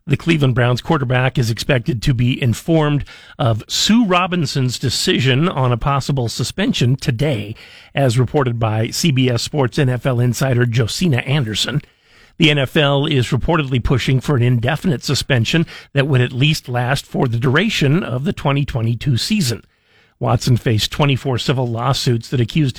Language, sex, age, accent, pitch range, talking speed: English, male, 50-69, American, 120-145 Hz, 145 wpm